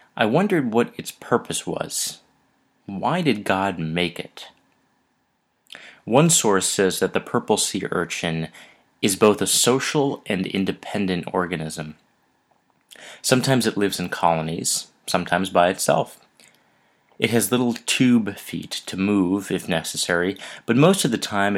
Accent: American